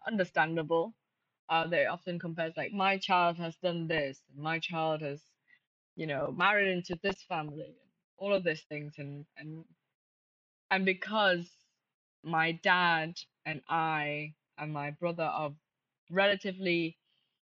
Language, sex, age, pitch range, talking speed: English, female, 20-39, 160-200 Hz, 125 wpm